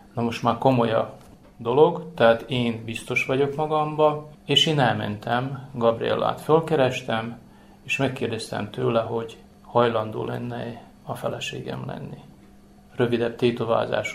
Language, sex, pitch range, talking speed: Hungarian, male, 115-135 Hz, 115 wpm